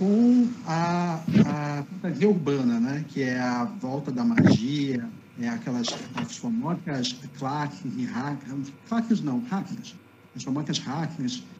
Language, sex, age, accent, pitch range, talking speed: Portuguese, male, 50-69, Brazilian, 140-220 Hz, 115 wpm